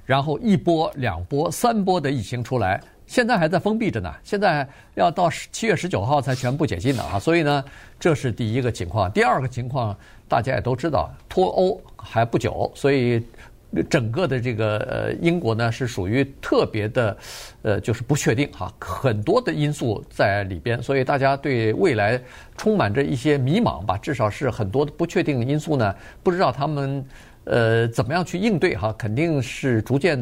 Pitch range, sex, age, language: 110-145 Hz, male, 50-69, Chinese